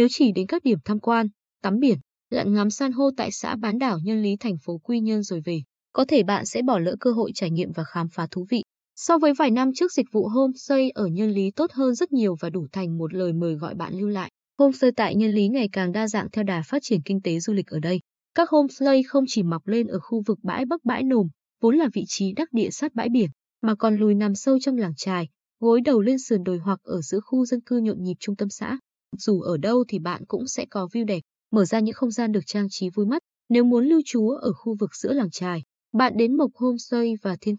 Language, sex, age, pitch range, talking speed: Vietnamese, female, 20-39, 190-255 Hz, 265 wpm